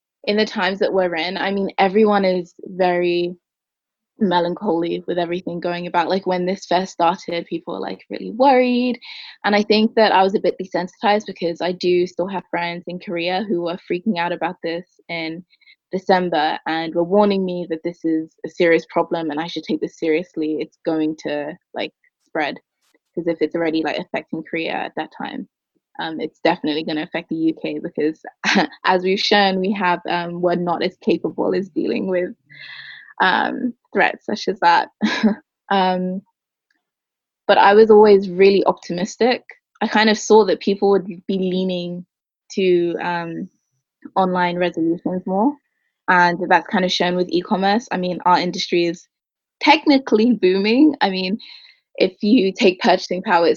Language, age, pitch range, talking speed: English, 20-39, 170-205 Hz, 170 wpm